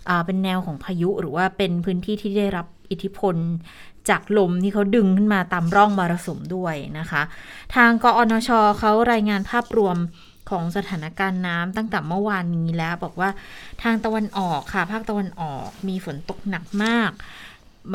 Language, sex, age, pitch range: Thai, female, 20-39, 175-215 Hz